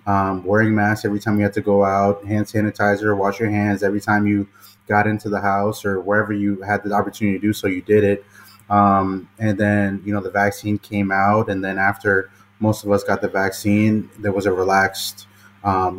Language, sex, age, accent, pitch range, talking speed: English, male, 20-39, American, 95-105 Hz, 215 wpm